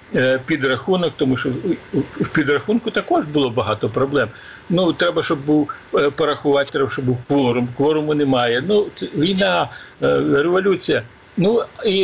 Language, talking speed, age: Ukrainian, 130 wpm, 50-69